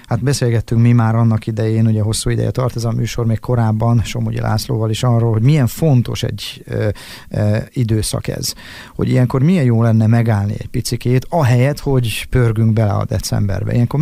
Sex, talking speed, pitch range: male, 180 wpm, 110-125 Hz